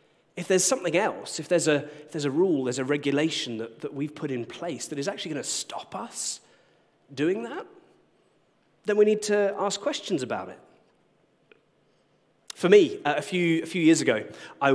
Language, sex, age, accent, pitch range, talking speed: English, male, 30-49, British, 125-180 Hz, 190 wpm